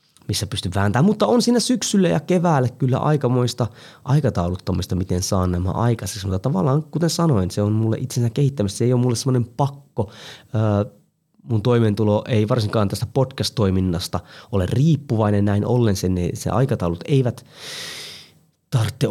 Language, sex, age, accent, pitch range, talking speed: Finnish, male, 30-49, native, 100-135 Hz, 145 wpm